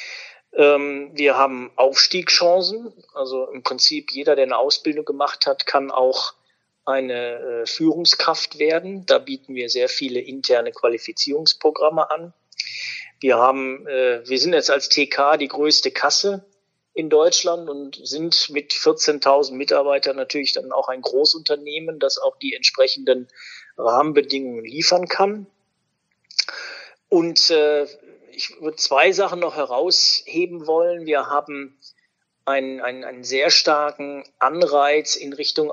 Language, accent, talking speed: German, German, 125 wpm